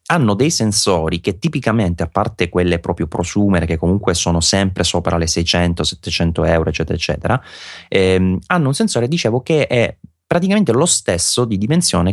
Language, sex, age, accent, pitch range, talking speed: Italian, male, 30-49, native, 85-105 Hz, 160 wpm